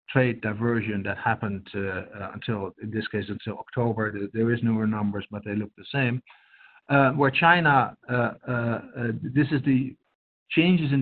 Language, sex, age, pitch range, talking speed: English, male, 50-69, 110-135 Hz, 175 wpm